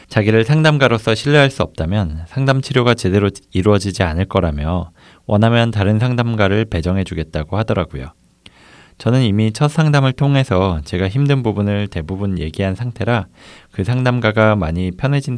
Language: Korean